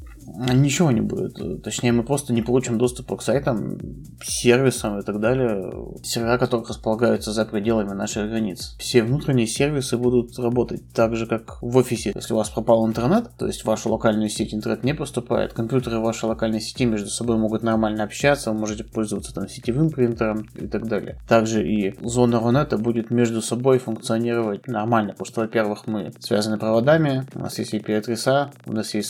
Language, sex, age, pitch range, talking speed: Russian, male, 20-39, 110-120 Hz, 175 wpm